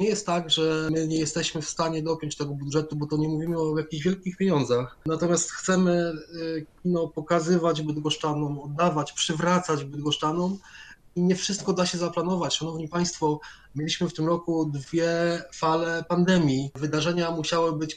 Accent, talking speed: native, 150 wpm